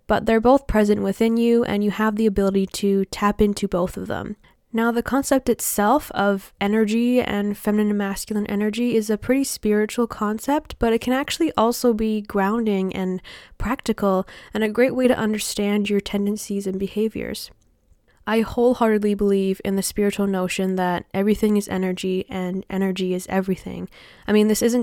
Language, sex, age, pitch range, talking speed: English, female, 10-29, 195-225 Hz, 170 wpm